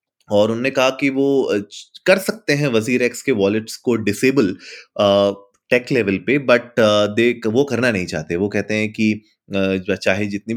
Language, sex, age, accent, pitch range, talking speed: Hindi, male, 30-49, native, 105-140 Hz, 160 wpm